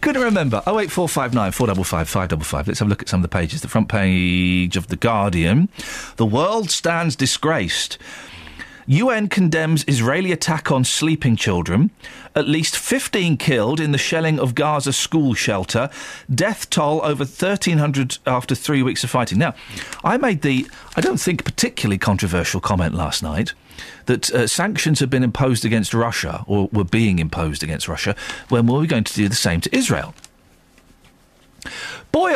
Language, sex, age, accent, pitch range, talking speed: English, male, 40-59, British, 110-180 Hz, 180 wpm